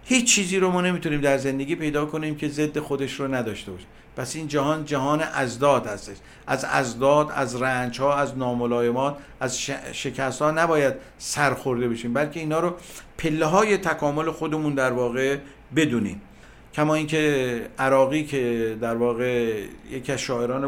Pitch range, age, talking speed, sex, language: 125-155 Hz, 50-69, 155 wpm, male, Persian